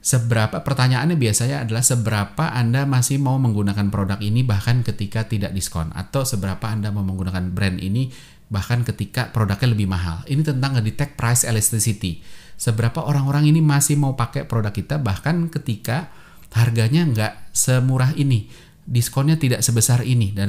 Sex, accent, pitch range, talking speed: male, native, 100-135 Hz, 150 wpm